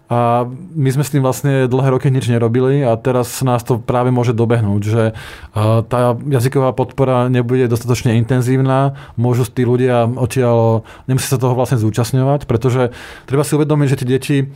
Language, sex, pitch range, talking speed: Slovak, male, 120-135 Hz, 165 wpm